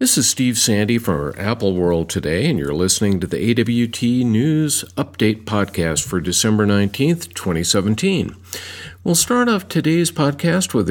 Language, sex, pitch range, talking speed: English, male, 90-135 Hz, 150 wpm